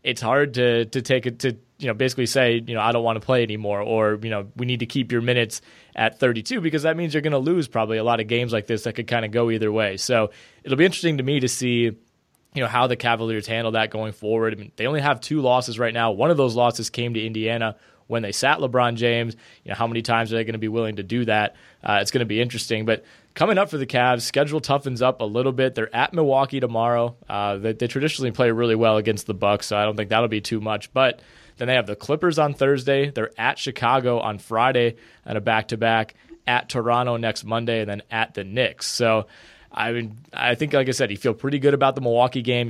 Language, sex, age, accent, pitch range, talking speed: English, male, 20-39, American, 110-130 Hz, 260 wpm